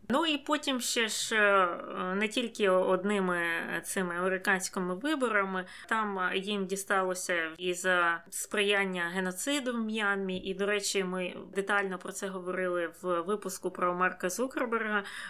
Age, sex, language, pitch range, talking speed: 20-39, female, Ukrainian, 175-205 Hz, 130 wpm